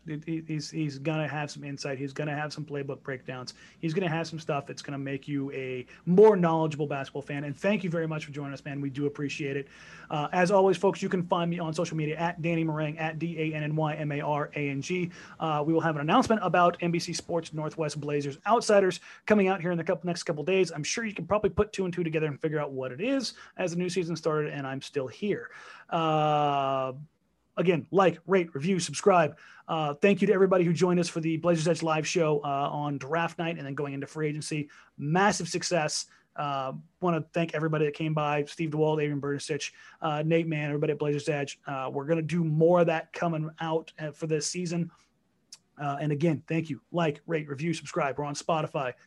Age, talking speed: 30-49, 215 wpm